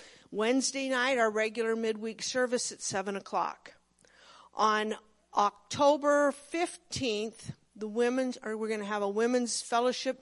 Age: 50-69